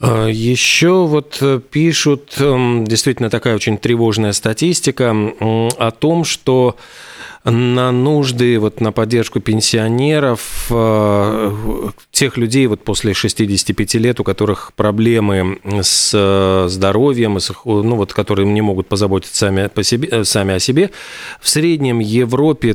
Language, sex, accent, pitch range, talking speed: Russian, male, native, 105-125 Hz, 100 wpm